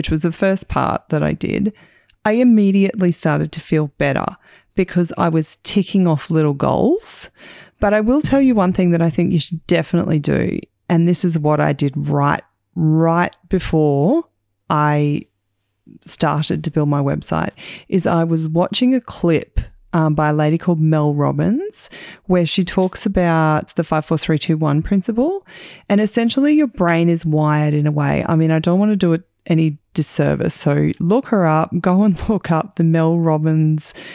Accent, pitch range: Australian, 150-180 Hz